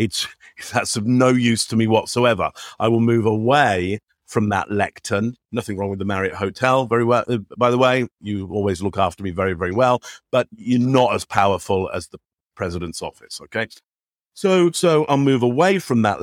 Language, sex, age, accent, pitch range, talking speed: English, male, 50-69, British, 100-120 Hz, 190 wpm